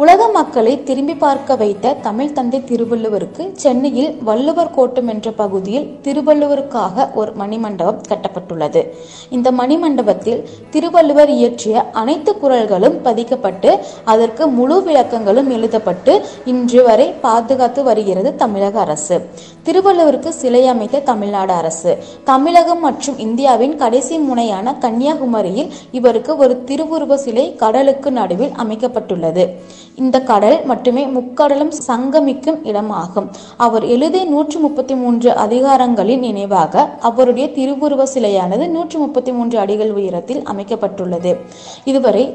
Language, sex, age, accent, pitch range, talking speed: Tamil, female, 20-39, native, 220-280 Hz, 100 wpm